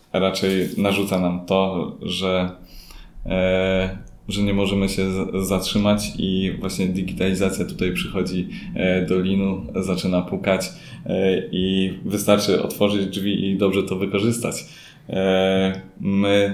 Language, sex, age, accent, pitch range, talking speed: Polish, male, 20-39, native, 90-100 Hz, 100 wpm